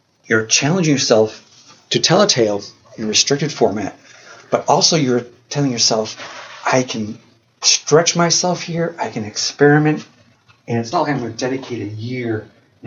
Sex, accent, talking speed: male, American, 160 wpm